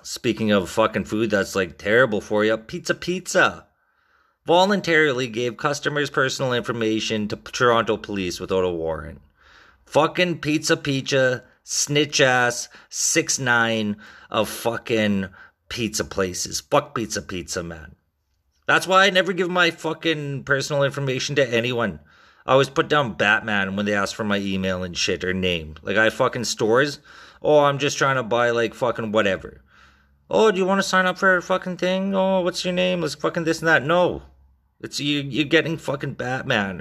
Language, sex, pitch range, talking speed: English, male, 95-150 Hz, 170 wpm